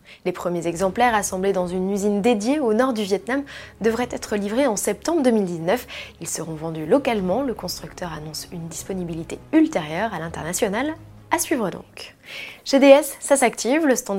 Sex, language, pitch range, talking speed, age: female, French, 175-245 Hz, 165 wpm, 20-39